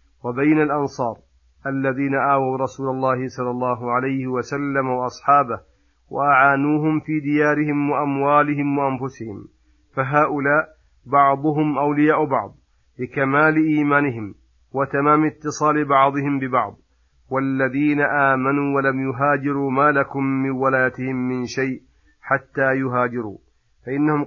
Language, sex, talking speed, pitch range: Arabic, male, 95 wpm, 130-145 Hz